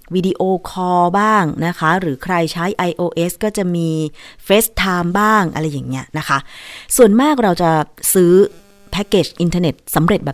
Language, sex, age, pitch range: Thai, female, 30-49, 160-210 Hz